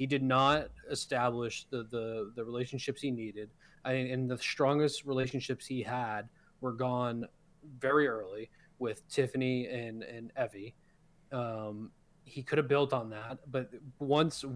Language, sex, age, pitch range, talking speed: English, male, 20-39, 120-150 Hz, 150 wpm